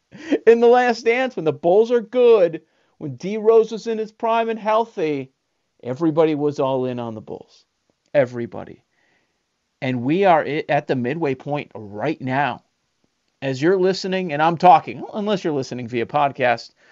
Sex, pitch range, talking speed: male, 135-190 Hz, 165 wpm